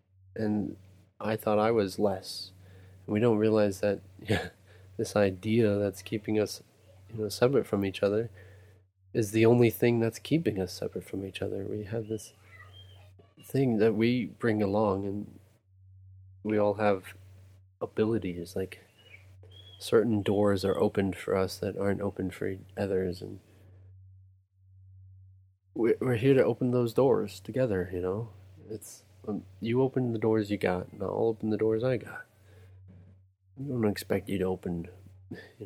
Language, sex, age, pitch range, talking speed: English, male, 20-39, 95-105 Hz, 150 wpm